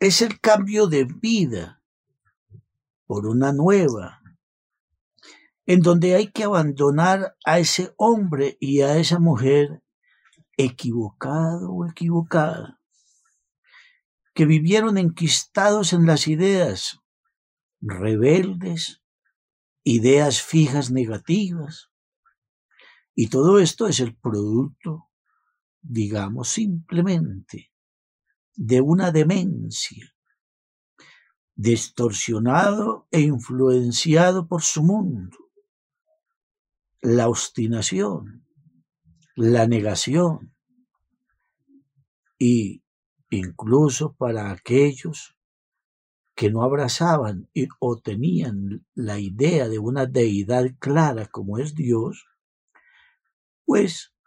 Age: 60-79